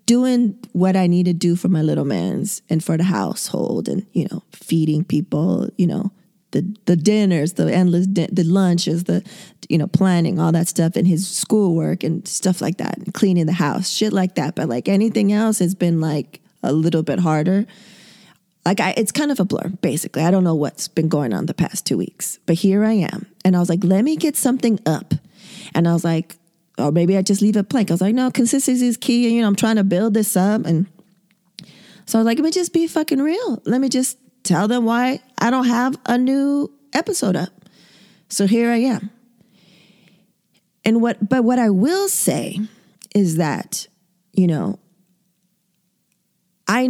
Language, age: English, 20-39